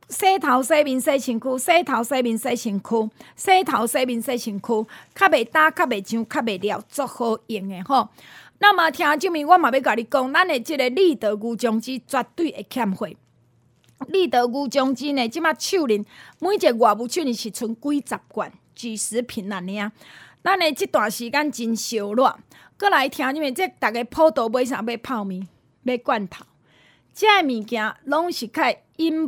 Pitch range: 220-295 Hz